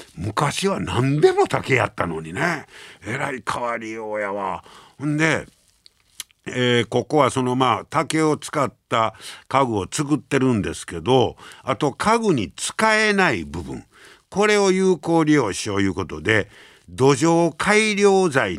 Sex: male